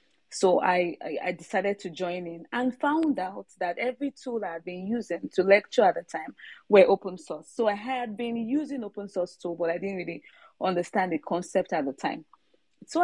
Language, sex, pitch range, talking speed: English, female, 175-230 Hz, 200 wpm